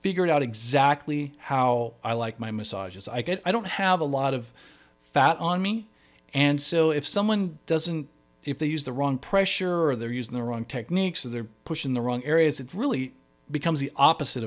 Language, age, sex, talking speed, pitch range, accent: English, 40-59, male, 195 wpm, 110-155 Hz, American